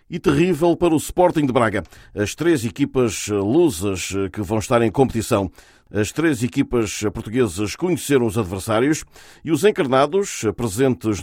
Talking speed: 145 wpm